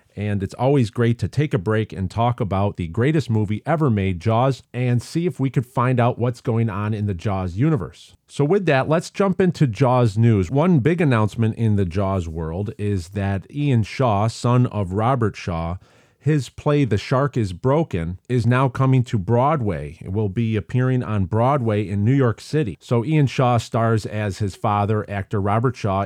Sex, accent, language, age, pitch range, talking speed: male, American, English, 40-59, 105-125 Hz, 195 wpm